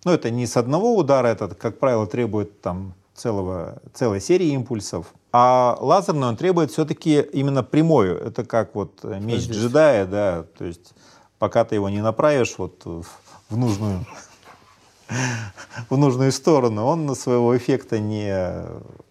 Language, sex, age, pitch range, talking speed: Russian, male, 30-49, 100-130 Hz, 145 wpm